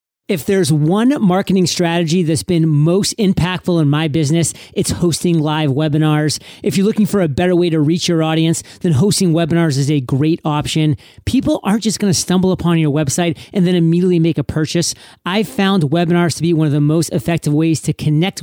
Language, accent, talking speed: English, American, 200 wpm